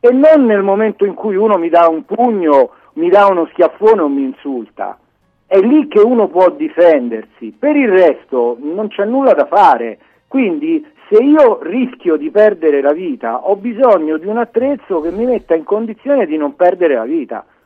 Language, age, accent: Italian, 50-69, native